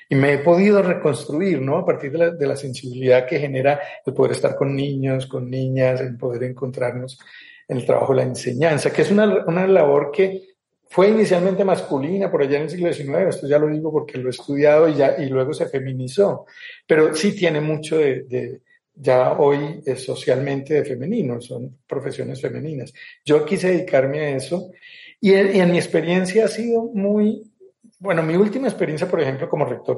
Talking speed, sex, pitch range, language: 190 wpm, male, 135-190 Hz, Spanish